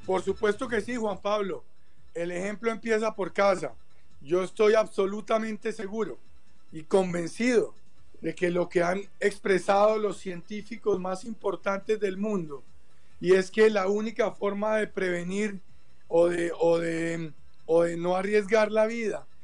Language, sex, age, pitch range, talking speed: Spanish, male, 40-59, 170-200 Hz, 145 wpm